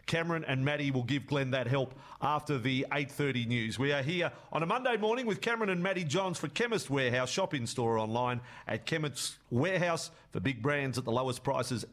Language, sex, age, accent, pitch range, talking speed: English, male, 40-59, Australian, 120-150 Hz, 200 wpm